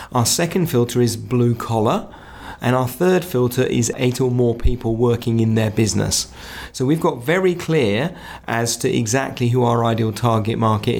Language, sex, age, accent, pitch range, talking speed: English, male, 30-49, British, 115-145 Hz, 175 wpm